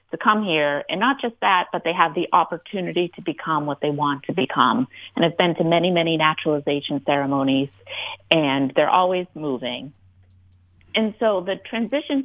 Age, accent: 30-49, American